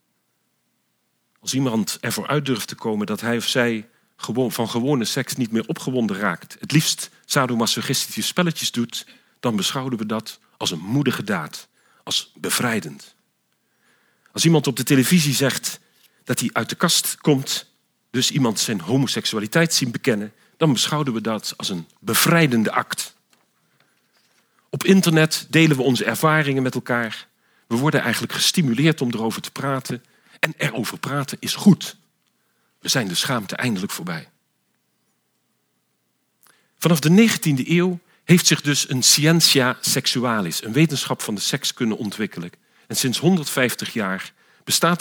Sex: male